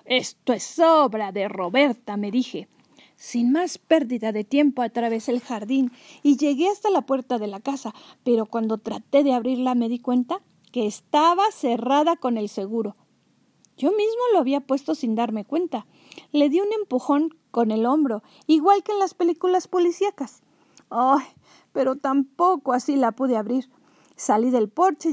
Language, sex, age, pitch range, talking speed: Spanish, female, 40-59, 225-300 Hz, 160 wpm